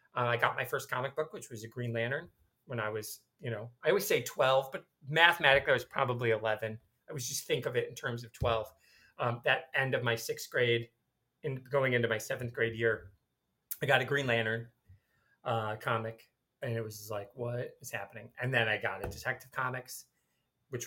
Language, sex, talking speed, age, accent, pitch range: English, male, 215 wpm, 30-49, American, 115-135 Hz